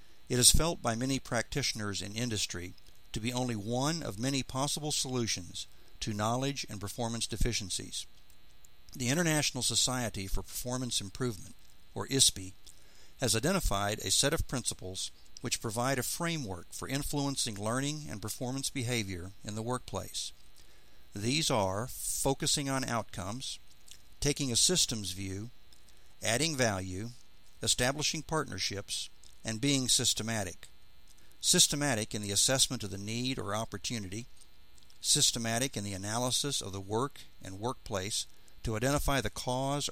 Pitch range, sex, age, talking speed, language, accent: 100-130 Hz, male, 60-79, 130 wpm, English, American